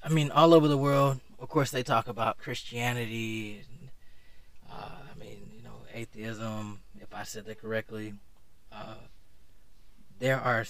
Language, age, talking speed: English, 20-39, 150 wpm